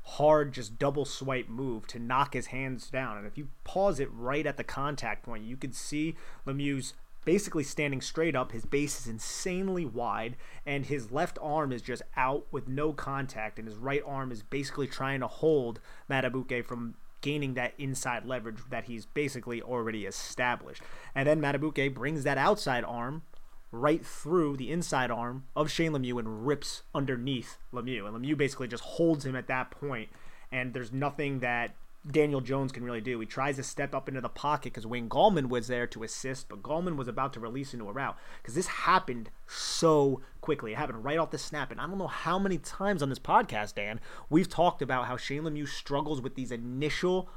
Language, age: English, 30-49